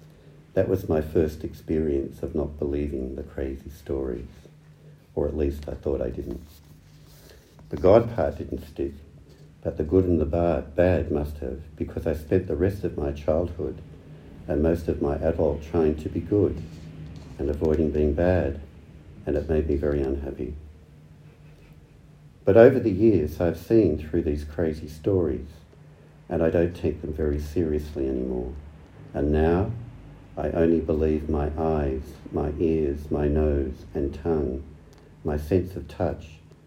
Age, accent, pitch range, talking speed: 60-79, Australian, 75-85 Hz, 150 wpm